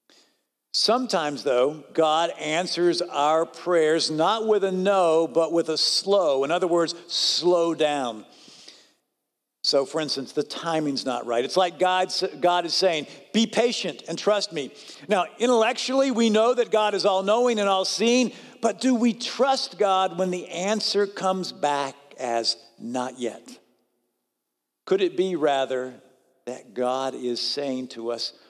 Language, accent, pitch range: English, American, 155-205 Hz